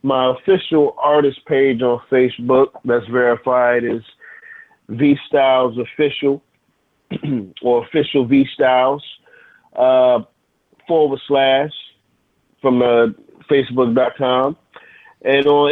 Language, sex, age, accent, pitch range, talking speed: English, male, 30-49, American, 110-135 Hz, 90 wpm